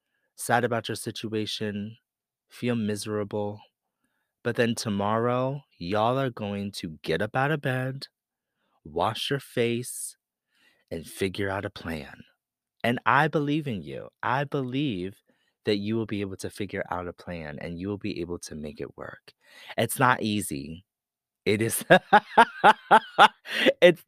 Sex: male